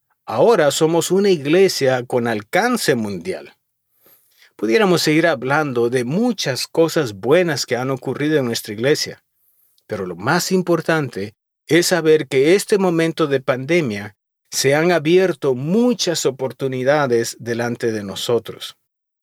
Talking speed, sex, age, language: 120 wpm, male, 50-69, Spanish